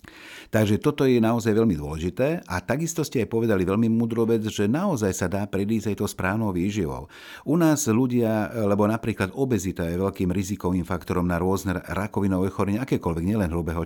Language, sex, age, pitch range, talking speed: Slovak, male, 60-79, 95-110 Hz, 175 wpm